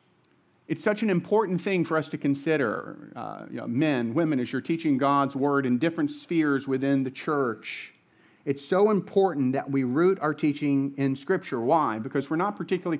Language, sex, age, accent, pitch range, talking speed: English, male, 40-59, American, 145-190 Hz, 175 wpm